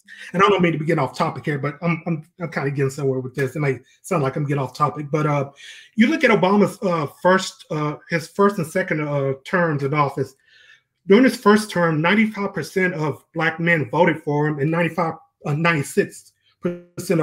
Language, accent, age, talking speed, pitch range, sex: English, American, 30-49, 205 wpm, 150-185 Hz, male